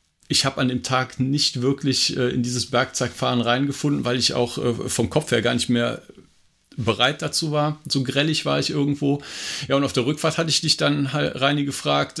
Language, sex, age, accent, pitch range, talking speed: German, male, 50-69, German, 115-145 Hz, 200 wpm